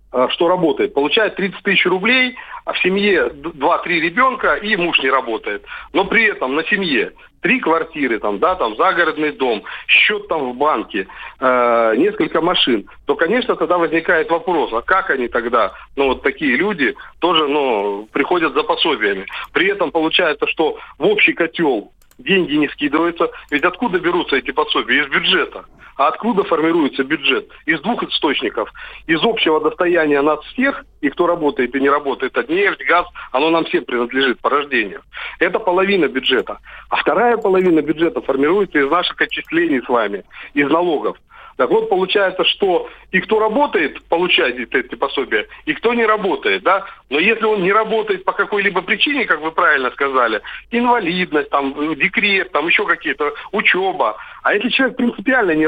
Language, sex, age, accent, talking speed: Russian, male, 40-59, native, 160 wpm